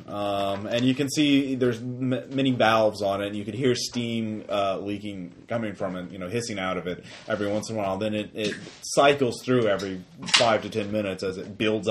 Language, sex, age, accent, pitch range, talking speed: English, male, 30-49, American, 100-140 Hz, 225 wpm